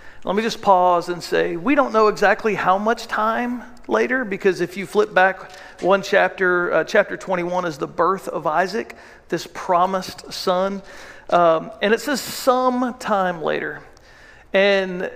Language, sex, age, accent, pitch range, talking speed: English, male, 50-69, American, 185-230 Hz, 160 wpm